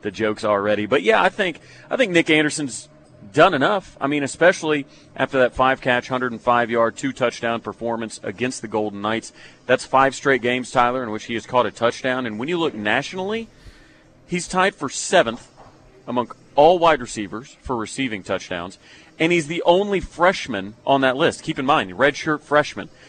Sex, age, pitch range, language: male, 40-59, 115-140 Hz, English